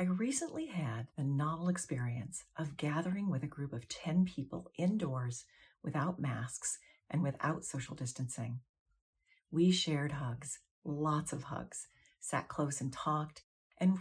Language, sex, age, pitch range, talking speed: English, female, 40-59, 125-165 Hz, 135 wpm